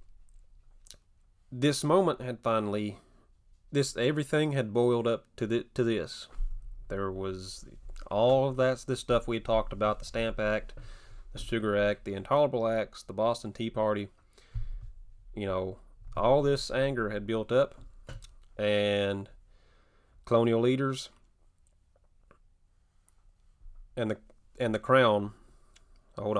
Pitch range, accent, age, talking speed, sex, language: 95-120 Hz, American, 30-49, 120 wpm, male, English